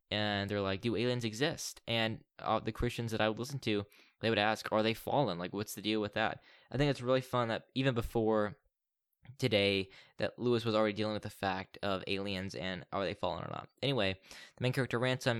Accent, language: American, English